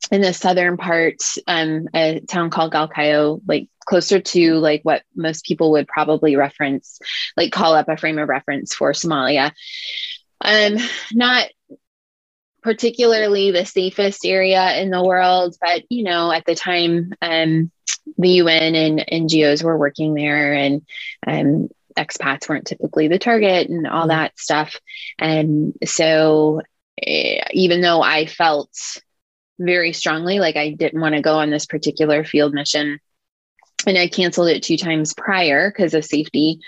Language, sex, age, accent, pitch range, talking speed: English, female, 20-39, American, 155-180 Hz, 150 wpm